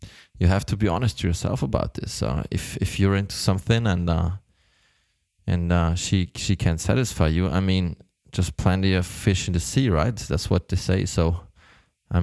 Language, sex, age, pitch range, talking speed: English, male, 20-39, 85-110 Hz, 195 wpm